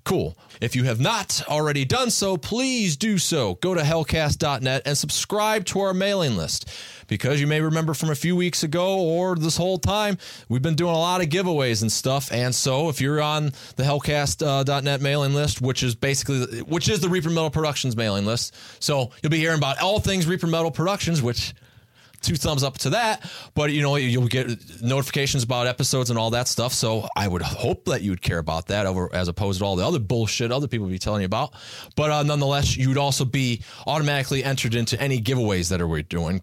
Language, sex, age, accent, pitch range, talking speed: English, male, 30-49, American, 110-150 Hz, 215 wpm